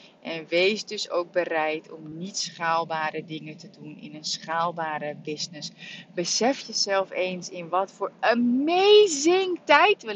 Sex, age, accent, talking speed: female, 30-49, Dutch, 140 wpm